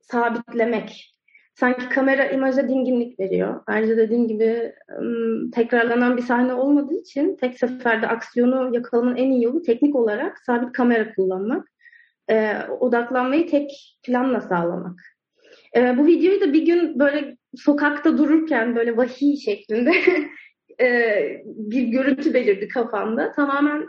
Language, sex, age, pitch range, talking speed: Turkish, female, 30-49, 235-300 Hz, 125 wpm